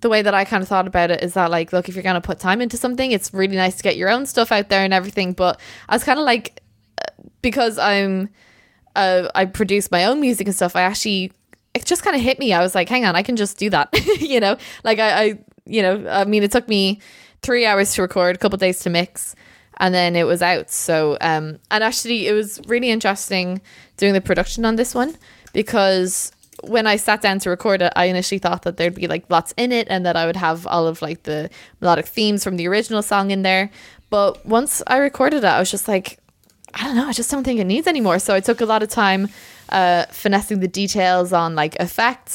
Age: 20-39